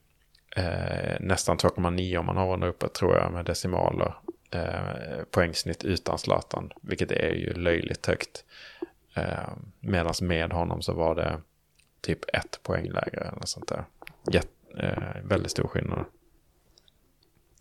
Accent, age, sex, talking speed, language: Norwegian, 30-49, male, 135 wpm, Swedish